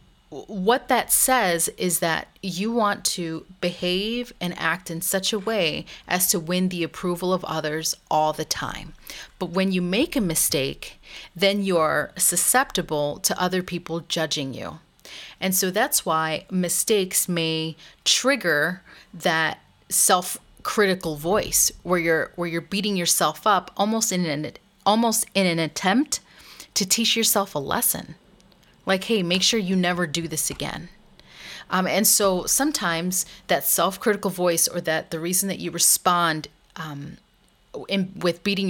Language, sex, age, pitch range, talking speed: English, female, 30-49, 165-195 Hz, 145 wpm